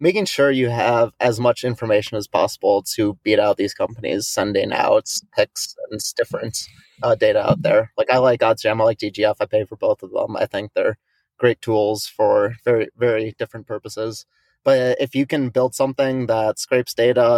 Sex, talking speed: male, 190 wpm